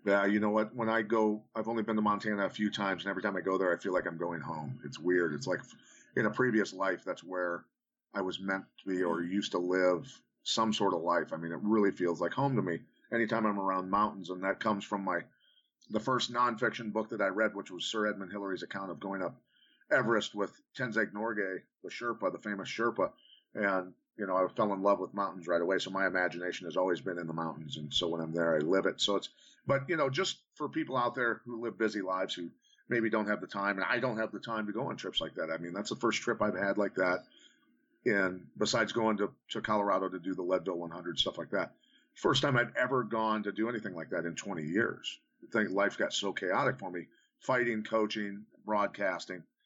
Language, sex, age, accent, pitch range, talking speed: English, male, 40-59, American, 95-115 Hz, 245 wpm